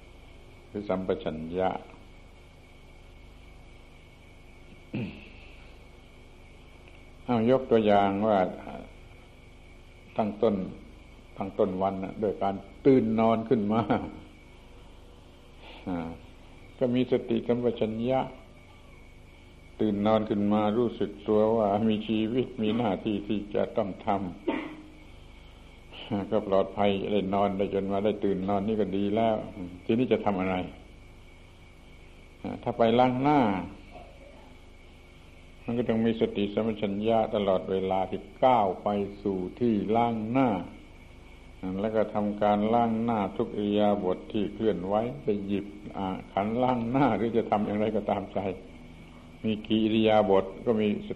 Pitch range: 90-110 Hz